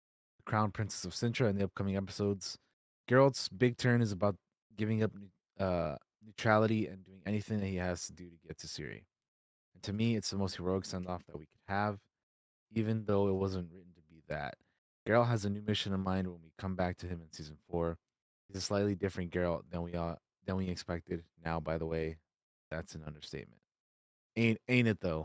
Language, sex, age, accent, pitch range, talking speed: English, male, 20-39, American, 90-110 Hz, 205 wpm